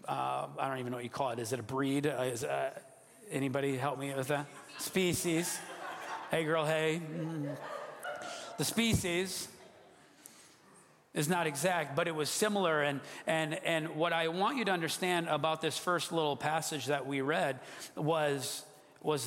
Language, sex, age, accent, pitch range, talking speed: English, male, 40-59, American, 135-160 Hz, 160 wpm